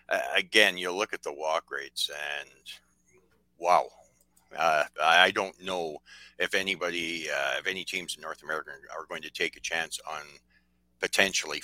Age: 60-79